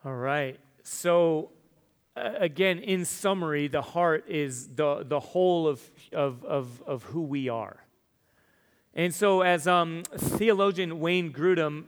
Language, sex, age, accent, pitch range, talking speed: English, male, 30-49, American, 145-170 Hz, 135 wpm